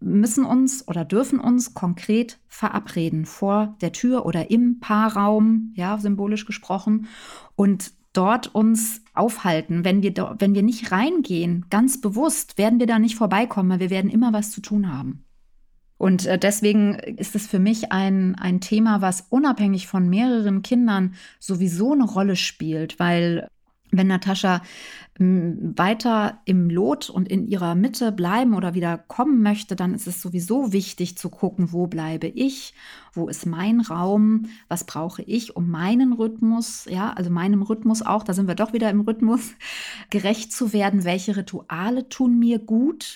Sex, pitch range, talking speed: female, 185-230 Hz, 155 wpm